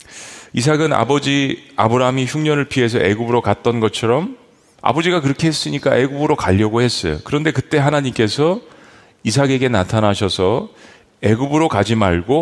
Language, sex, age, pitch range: Korean, male, 40-59, 105-140 Hz